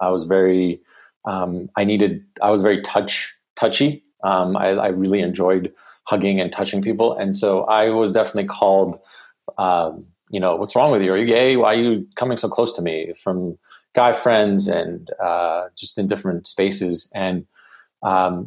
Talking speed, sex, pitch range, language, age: 180 wpm, male, 90-105 Hz, English, 30-49